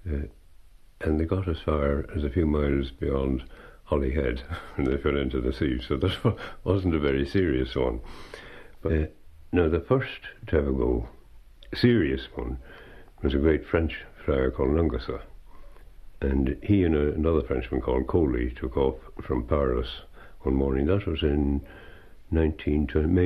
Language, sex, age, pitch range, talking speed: English, male, 60-79, 65-85 Hz, 165 wpm